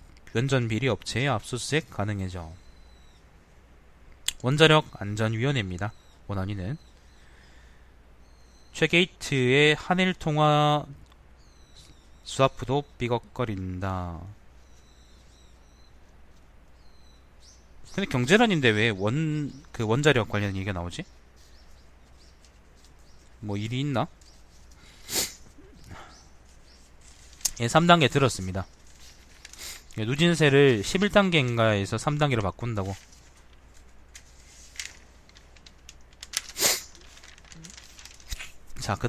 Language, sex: Korean, male